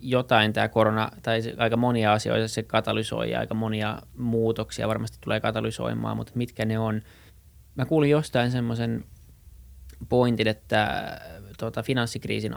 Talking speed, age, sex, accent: 130 wpm, 20-39, male, native